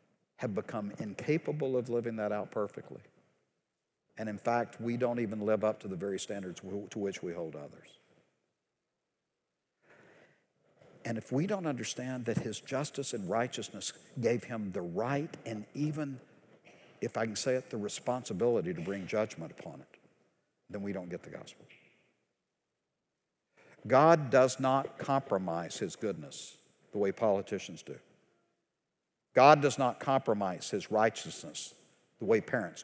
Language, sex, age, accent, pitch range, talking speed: English, male, 60-79, American, 110-160 Hz, 145 wpm